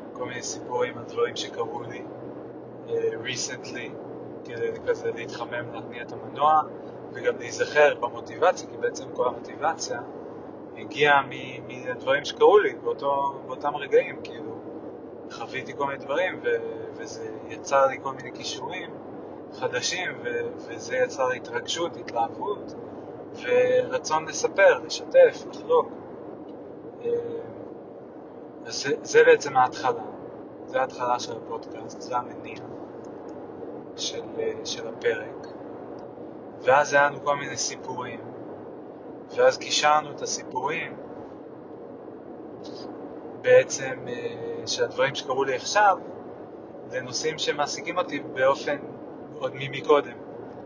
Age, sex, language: 30-49, male, Hebrew